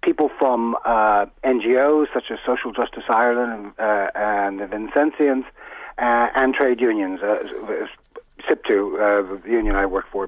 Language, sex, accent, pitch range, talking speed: English, male, American, 125-195 Hz, 150 wpm